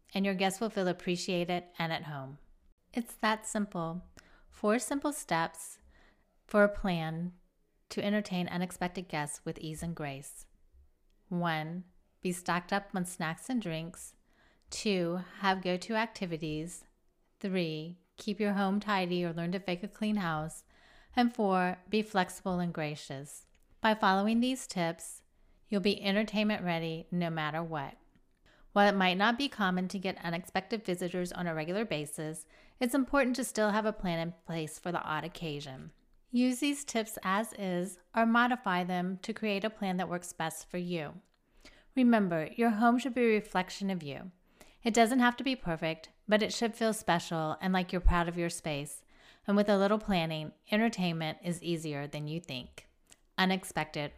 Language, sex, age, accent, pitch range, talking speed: English, female, 30-49, American, 165-210 Hz, 165 wpm